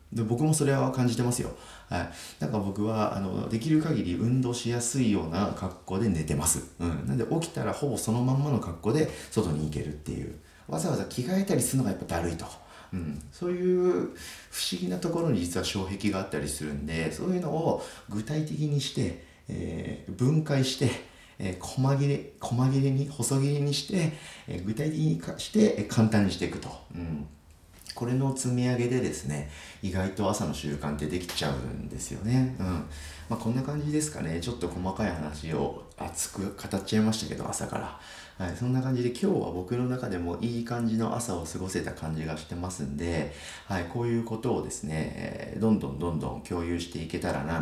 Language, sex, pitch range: Japanese, male, 85-125 Hz